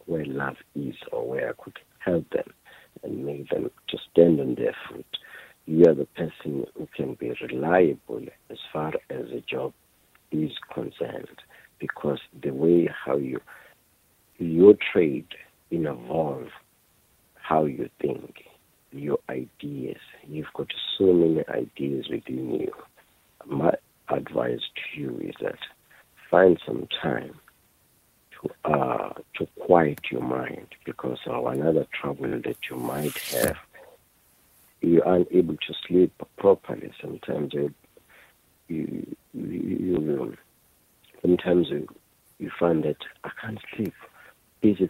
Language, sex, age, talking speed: English, male, 60-79, 125 wpm